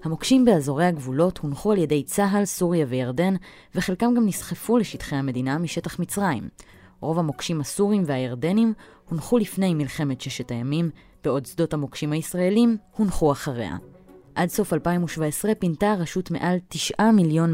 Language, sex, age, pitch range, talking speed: Hebrew, female, 20-39, 145-205 Hz, 135 wpm